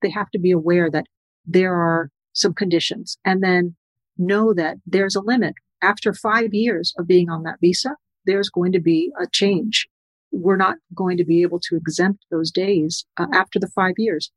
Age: 40-59